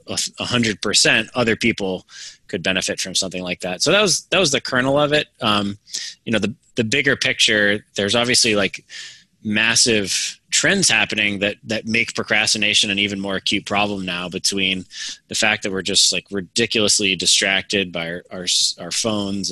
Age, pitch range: 20-39, 95-110 Hz